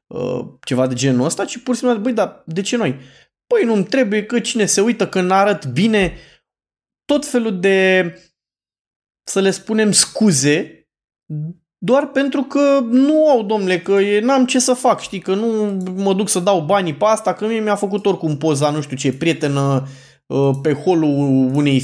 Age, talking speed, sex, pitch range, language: 20-39, 175 wpm, male, 155-220 Hz, Romanian